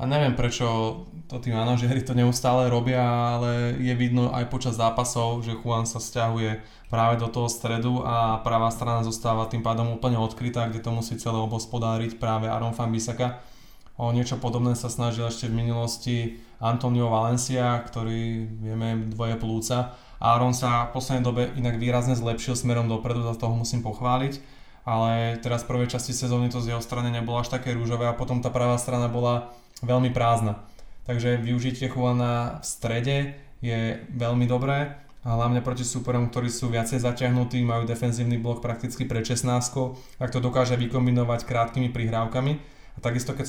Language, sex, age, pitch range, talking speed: Slovak, male, 20-39, 115-125 Hz, 165 wpm